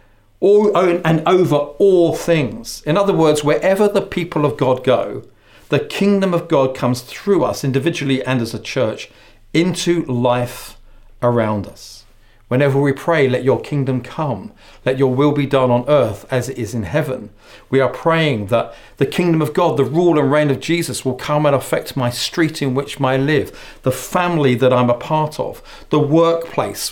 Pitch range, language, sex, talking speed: 120-160 Hz, English, male, 180 wpm